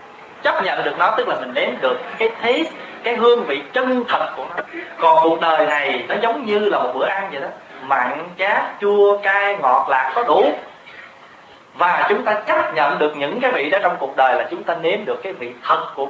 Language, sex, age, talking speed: Vietnamese, male, 20-39, 225 wpm